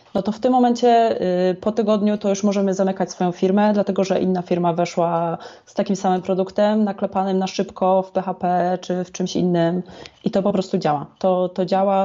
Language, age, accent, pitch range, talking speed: Polish, 20-39, native, 180-200 Hz, 195 wpm